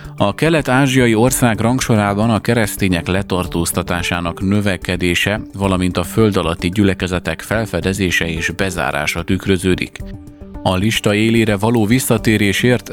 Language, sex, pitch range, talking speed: Hungarian, male, 90-105 Hz, 100 wpm